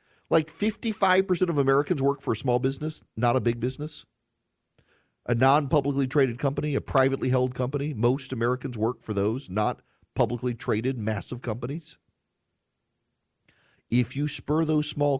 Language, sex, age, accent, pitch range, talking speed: English, male, 40-59, American, 100-130 Hz, 140 wpm